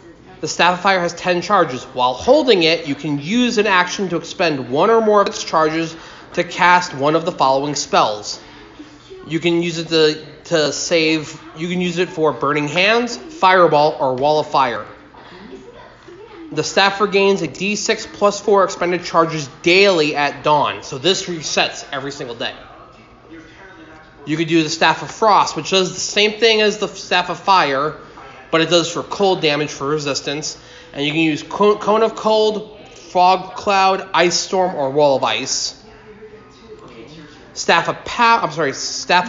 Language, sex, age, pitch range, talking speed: English, male, 30-49, 155-200 Hz, 175 wpm